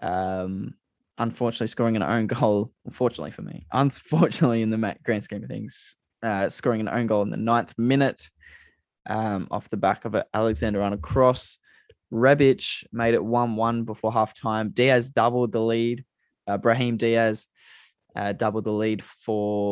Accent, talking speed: Australian, 160 wpm